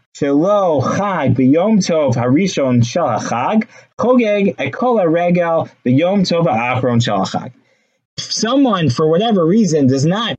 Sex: male